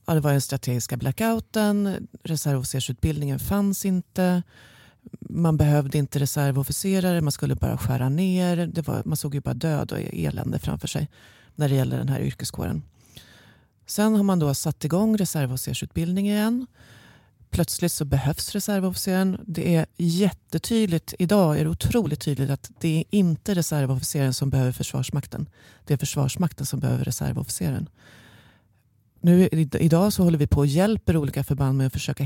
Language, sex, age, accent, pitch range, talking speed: Swedish, female, 30-49, native, 135-170 Hz, 155 wpm